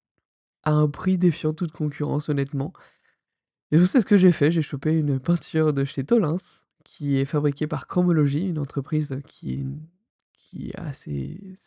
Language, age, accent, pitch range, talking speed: French, 20-39, French, 145-175 Hz, 170 wpm